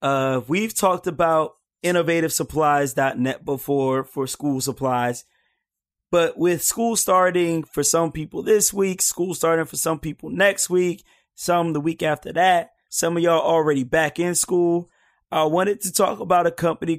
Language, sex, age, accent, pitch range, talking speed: English, male, 30-49, American, 140-175 Hz, 155 wpm